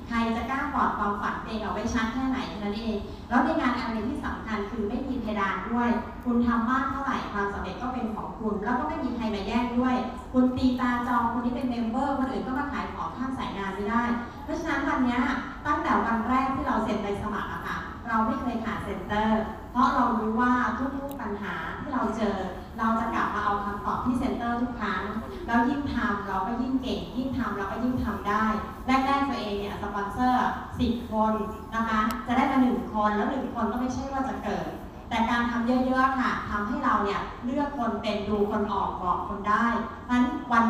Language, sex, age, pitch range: Thai, female, 30-49, 210-255 Hz